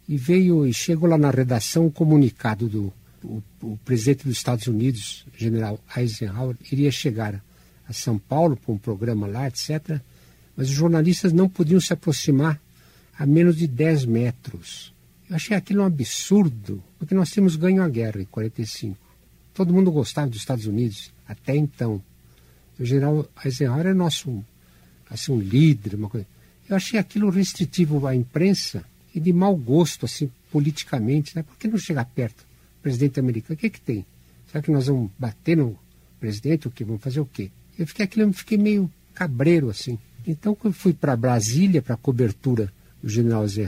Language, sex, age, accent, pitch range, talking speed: Portuguese, male, 60-79, Brazilian, 110-165 Hz, 170 wpm